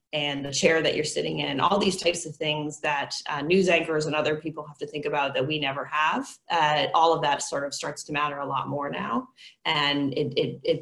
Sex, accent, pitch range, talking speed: female, American, 140-160 Hz, 240 wpm